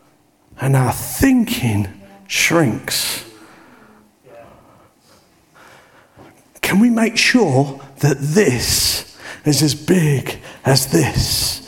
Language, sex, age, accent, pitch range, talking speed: English, male, 50-69, British, 160-235 Hz, 75 wpm